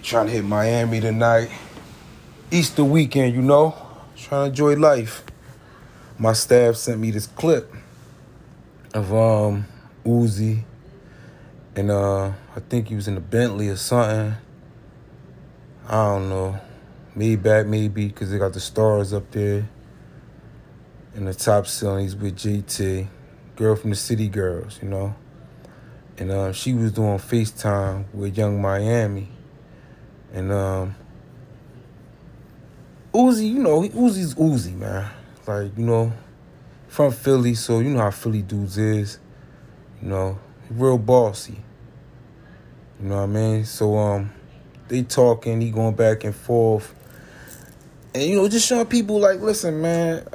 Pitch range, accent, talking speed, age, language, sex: 105-130 Hz, American, 135 wpm, 30-49, English, male